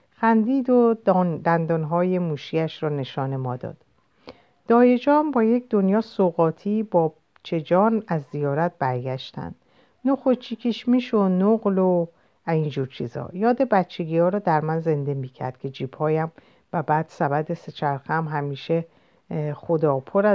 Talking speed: 120 wpm